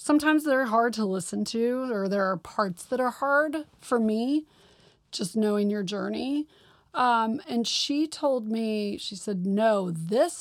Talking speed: 160 wpm